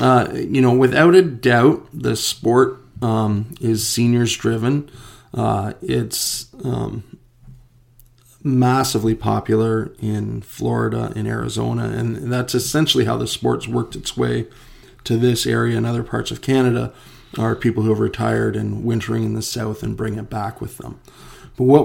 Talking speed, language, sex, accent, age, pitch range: 150 wpm, English, male, American, 40-59, 110-125 Hz